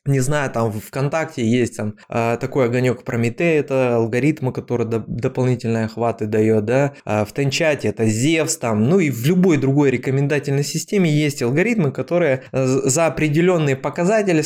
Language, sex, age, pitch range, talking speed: Russian, male, 20-39, 120-165 Hz, 150 wpm